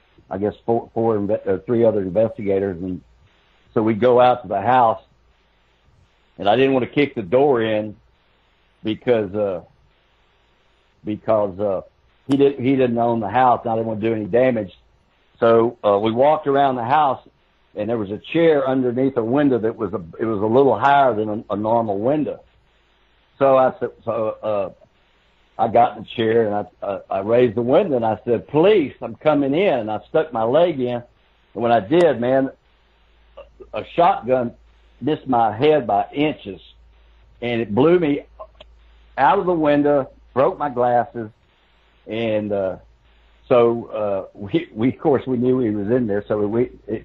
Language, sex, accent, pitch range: English, male, American, 100-130 Hz